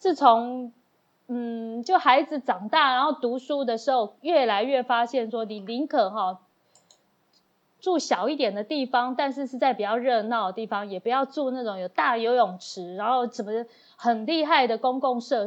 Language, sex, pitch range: Chinese, female, 220-285 Hz